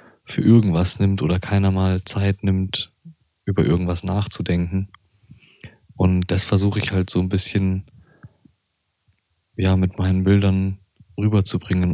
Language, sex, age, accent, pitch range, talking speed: German, male, 20-39, German, 90-105 Hz, 120 wpm